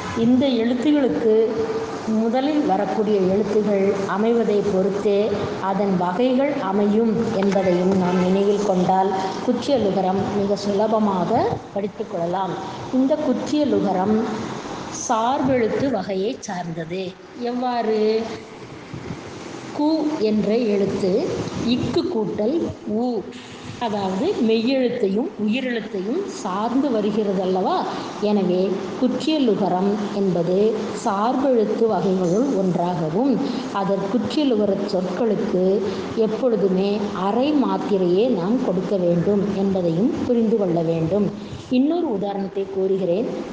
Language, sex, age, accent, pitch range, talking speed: Tamil, female, 20-39, native, 195-245 Hz, 75 wpm